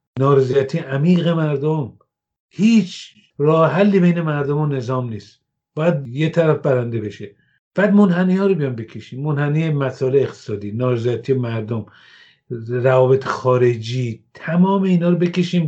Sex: male